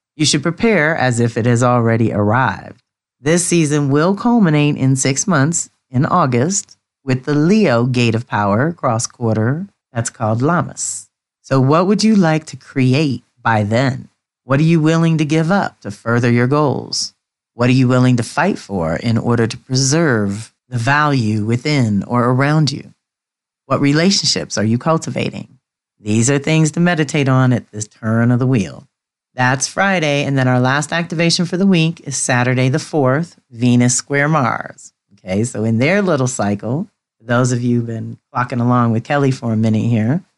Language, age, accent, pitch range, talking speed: English, 40-59, American, 115-150 Hz, 175 wpm